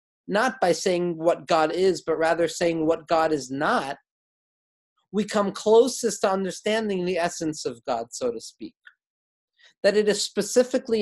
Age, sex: 40-59, male